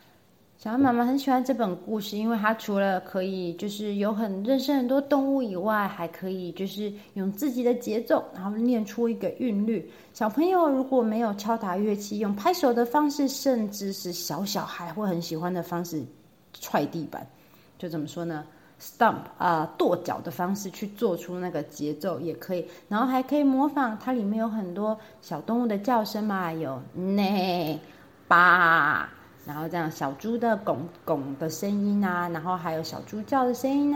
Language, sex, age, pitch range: Chinese, female, 30-49, 180-235 Hz